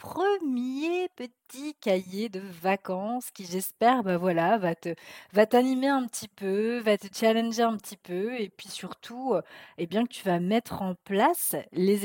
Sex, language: female, French